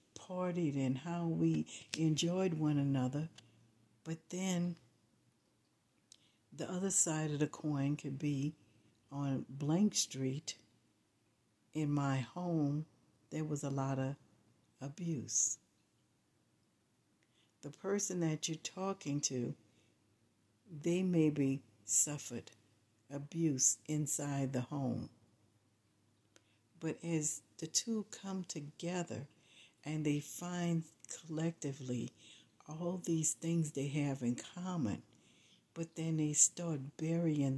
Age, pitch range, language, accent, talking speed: 60-79, 130-165 Hz, English, American, 100 wpm